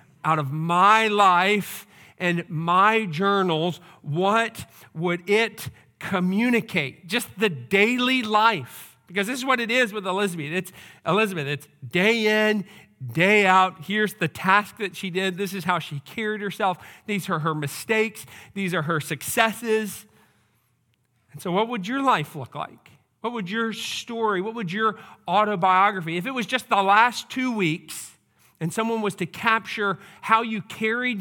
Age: 40-59